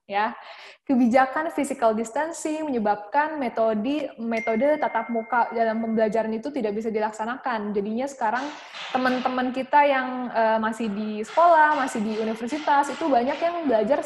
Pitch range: 220-275 Hz